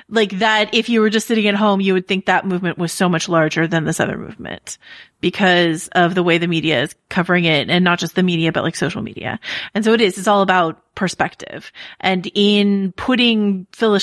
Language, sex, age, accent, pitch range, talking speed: English, female, 30-49, American, 175-215 Hz, 225 wpm